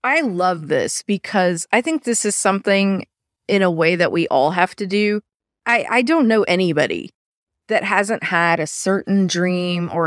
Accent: American